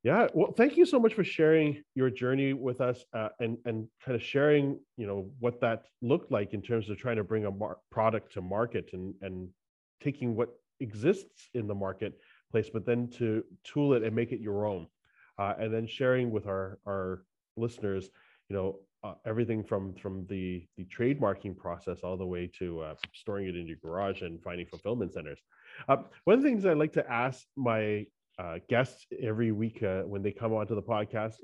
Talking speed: 200 wpm